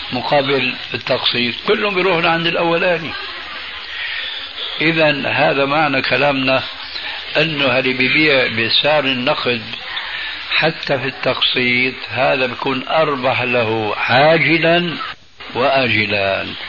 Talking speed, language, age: 85 wpm, Arabic, 60-79